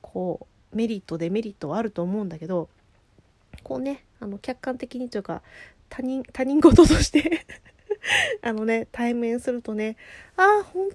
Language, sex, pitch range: Japanese, female, 200-310 Hz